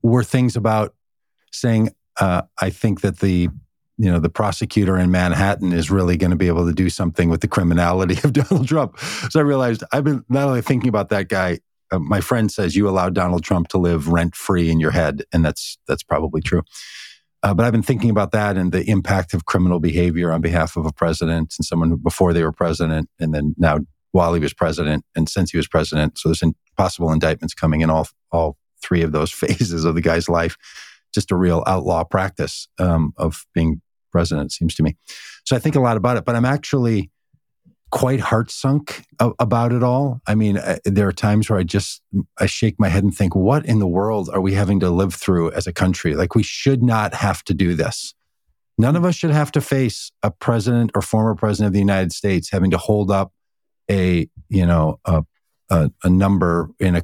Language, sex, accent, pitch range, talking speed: English, male, American, 85-110 Hz, 220 wpm